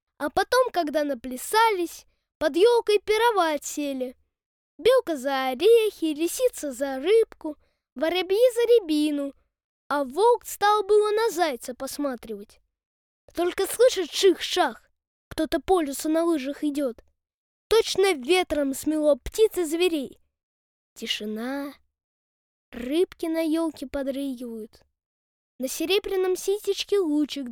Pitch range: 270-380 Hz